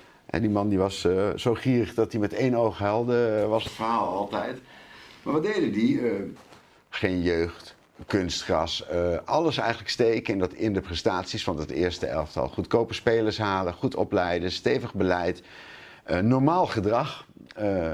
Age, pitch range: 50-69, 85-115 Hz